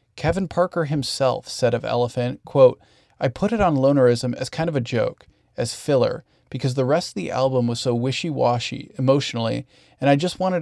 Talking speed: 185 wpm